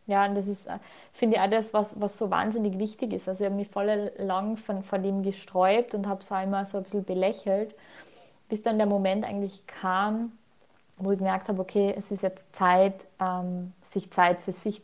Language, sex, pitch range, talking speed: German, female, 195-215 Hz, 215 wpm